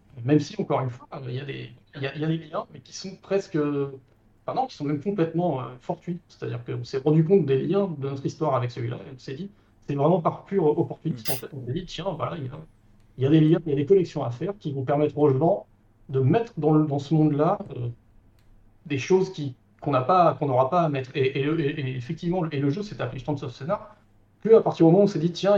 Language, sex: French, male